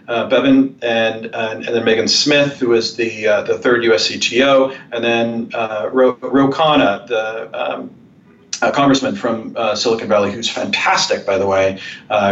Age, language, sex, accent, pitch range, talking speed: 40-59, English, male, American, 115-190 Hz, 170 wpm